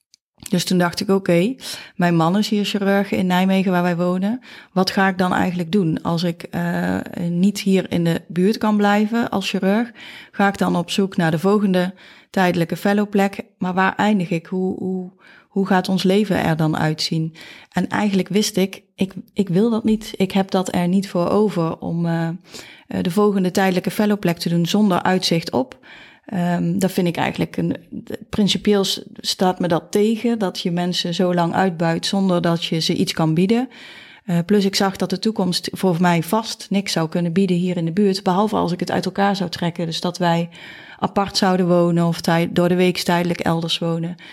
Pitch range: 175-200 Hz